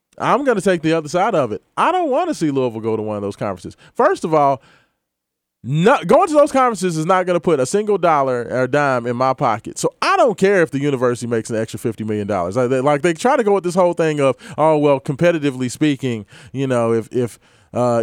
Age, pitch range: 20-39, 140-200 Hz